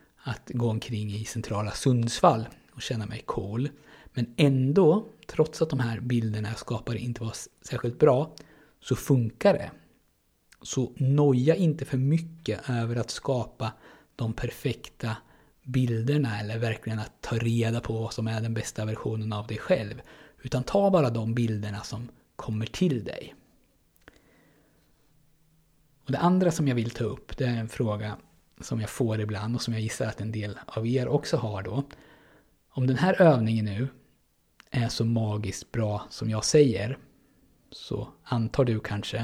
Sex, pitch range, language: male, 110-135 Hz, Swedish